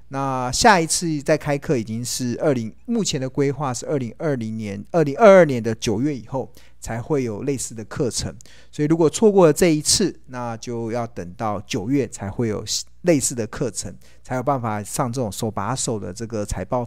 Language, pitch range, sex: Chinese, 110-150 Hz, male